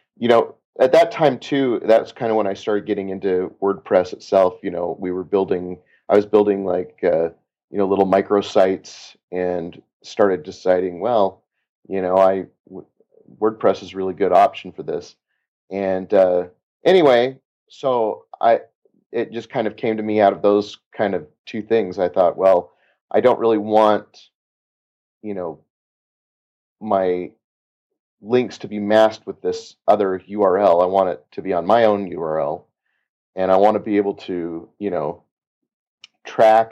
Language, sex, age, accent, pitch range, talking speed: English, male, 30-49, American, 95-115 Hz, 165 wpm